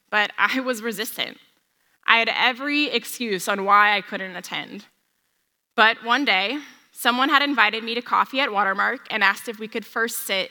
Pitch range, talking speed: 205-240 Hz, 175 wpm